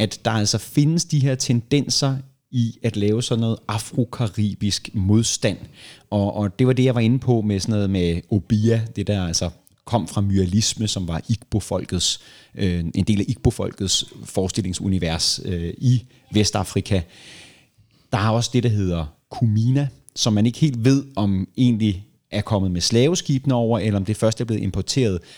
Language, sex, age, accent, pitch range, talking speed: Danish, male, 30-49, native, 95-120 Hz, 170 wpm